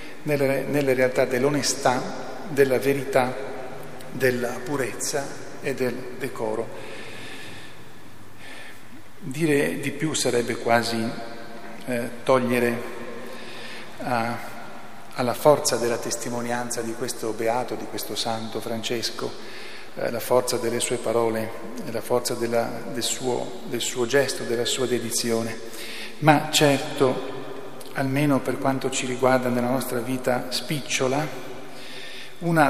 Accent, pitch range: native, 120-130 Hz